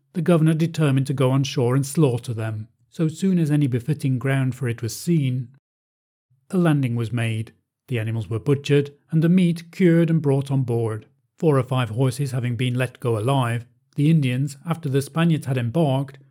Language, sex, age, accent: English, male, 40-59, British